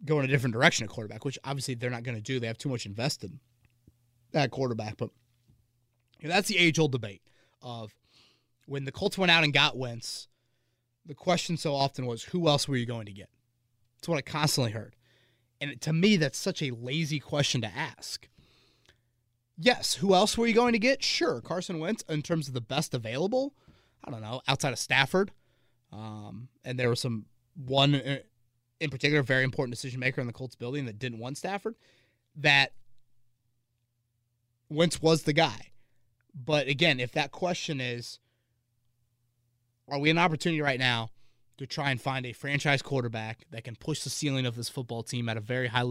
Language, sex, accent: English, male, American